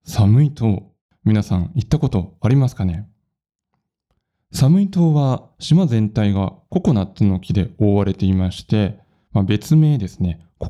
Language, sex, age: Japanese, male, 20-39